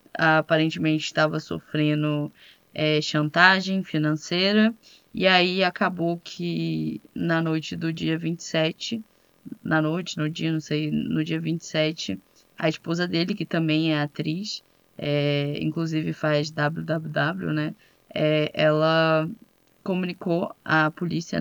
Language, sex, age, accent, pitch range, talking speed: Portuguese, female, 10-29, Brazilian, 155-175 Hz, 115 wpm